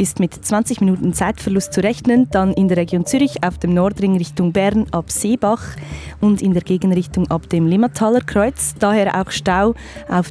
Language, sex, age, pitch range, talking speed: German, female, 20-39, 175-215 Hz, 180 wpm